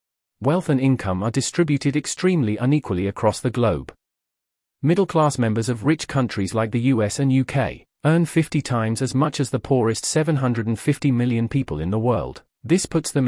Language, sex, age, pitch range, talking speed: English, male, 40-59, 110-140 Hz, 170 wpm